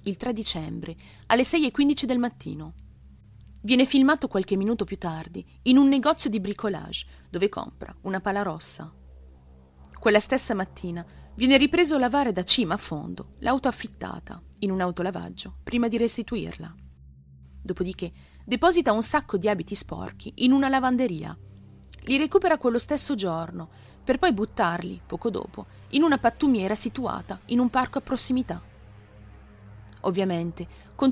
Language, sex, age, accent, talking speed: Italian, female, 30-49, native, 145 wpm